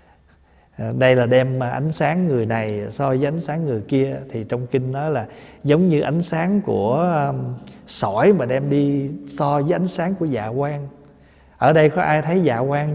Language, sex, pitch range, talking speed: Vietnamese, male, 125-170 Hz, 195 wpm